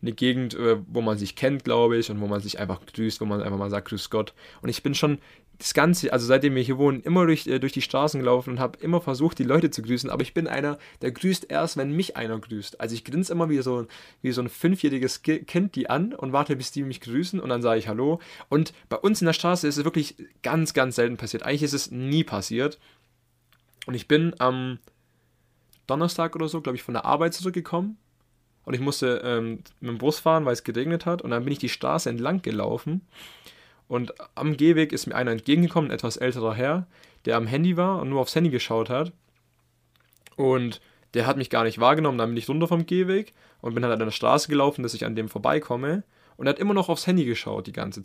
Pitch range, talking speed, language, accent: 120-160 Hz, 235 wpm, German, German